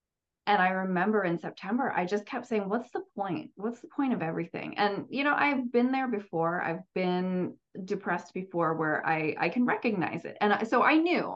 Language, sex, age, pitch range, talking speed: English, female, 30-49, 165-225 Hz, 200 wpm